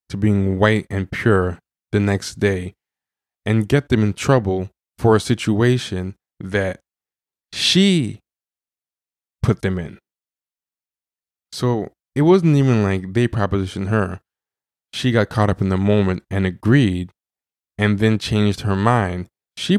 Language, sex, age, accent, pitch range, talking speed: English, male, 20-39, American, 95-120 Hz, 135 wpm